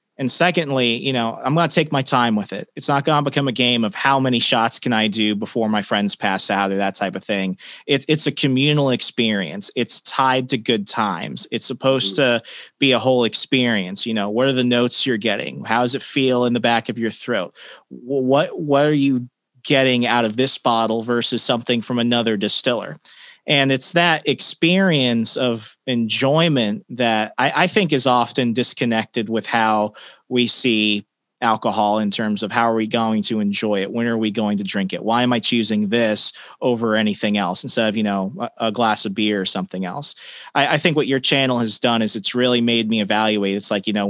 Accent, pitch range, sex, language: American, 110-135 Hz, male, English